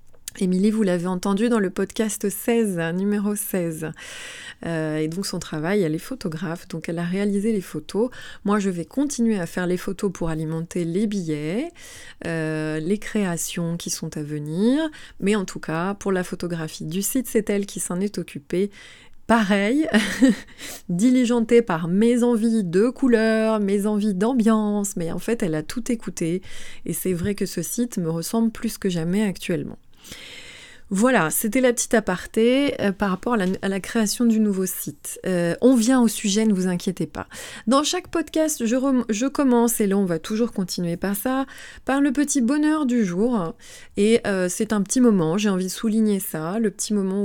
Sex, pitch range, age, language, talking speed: female, 180-230 Hz, 20-39, French, 185 wpm